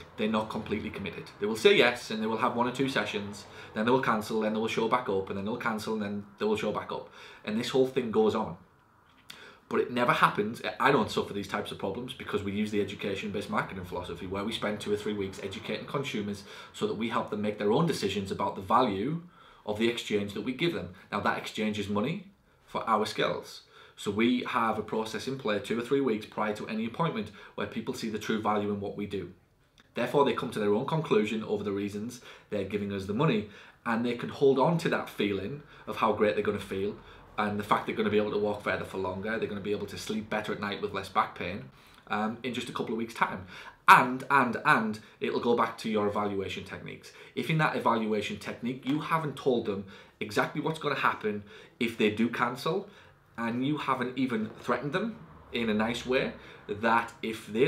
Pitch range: 105-140 Hz